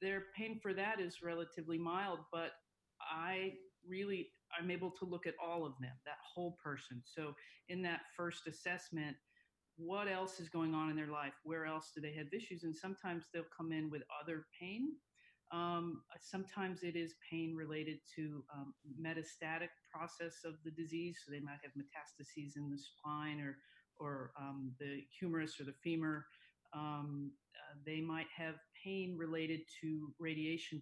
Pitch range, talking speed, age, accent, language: 145-170 Hz, 165 wpm, 40-59, American, English